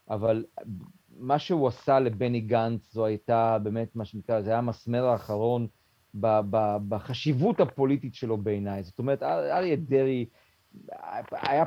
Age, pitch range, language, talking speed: 40-59, 115-135 Hz, Hebrew, 140 wpm